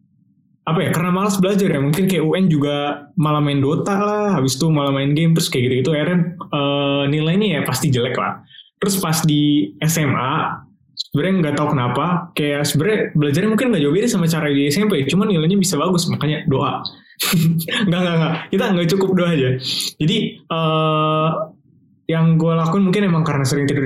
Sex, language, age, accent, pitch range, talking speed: male, Indonesian, 20-39, native, 135-180 Hz, 180 wpm